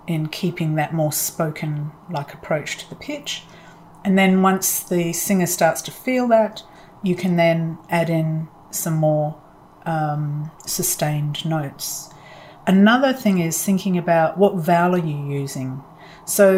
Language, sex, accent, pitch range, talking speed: English, female, Australian, 155-180 Hz, 145 wpm